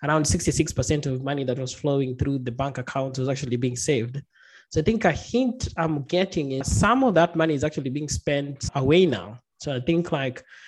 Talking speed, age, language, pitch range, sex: 210 wpm, 20-39, English, 130-160 Hz, male